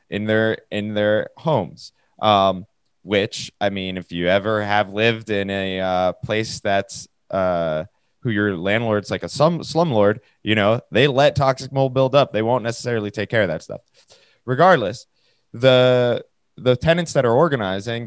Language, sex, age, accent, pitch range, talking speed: English, male, 20-39, American, 100-130 Hz, 165 wpm